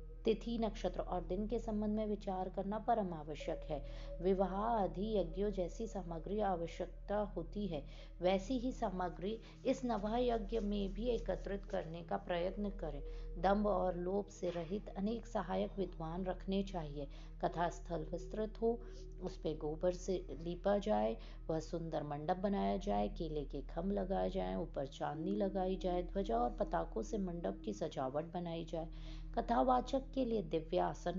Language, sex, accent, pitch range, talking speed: Hindi, female, native, 165-205 Hz, 110 wpm